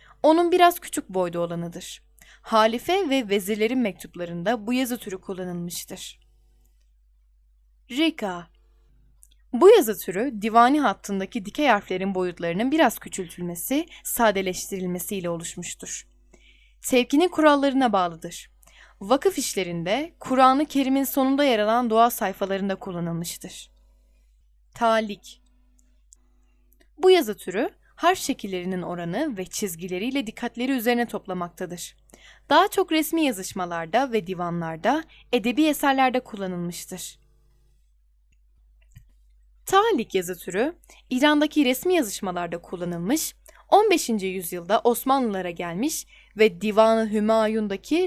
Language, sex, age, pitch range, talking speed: Turkish, female, 10-29, 175-265 Hz, 90 wpm